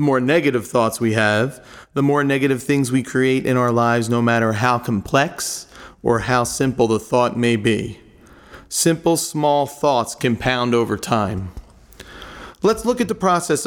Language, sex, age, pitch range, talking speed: English, male, 30-49, 120-155 Hz, 165 wpm